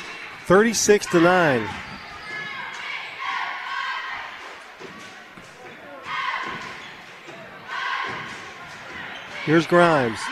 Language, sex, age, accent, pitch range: English, male, 40-59, American, 150-230 Hz